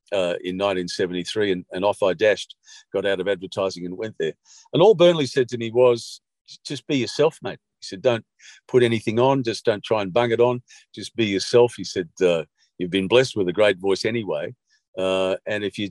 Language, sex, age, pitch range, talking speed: English, male, 50-69, 95-130 Hz, 215 wpm